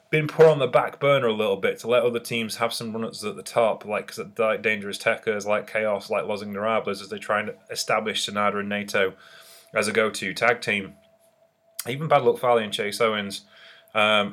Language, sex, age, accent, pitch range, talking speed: English, male, 20-39, British, 115-160 Hz, 220 wpm